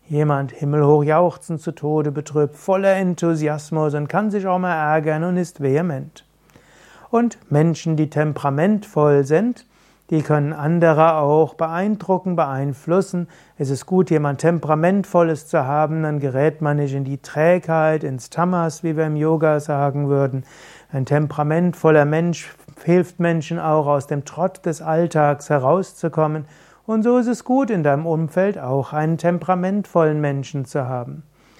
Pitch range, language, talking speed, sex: 150-180 Hz, German, 145 wpm, male